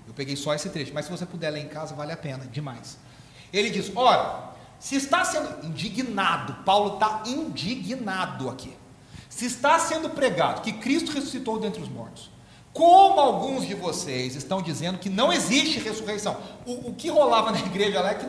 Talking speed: 180 wpm